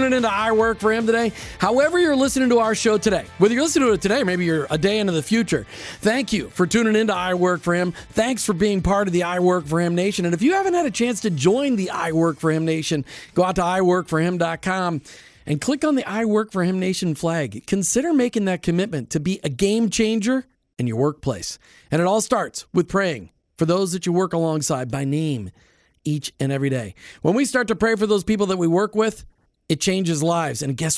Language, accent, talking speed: English, American, 240 wpm